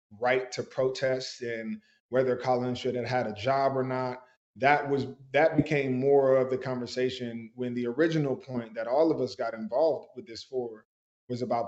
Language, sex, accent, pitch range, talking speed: English, male, American, 120-135 Hz, 185 wpm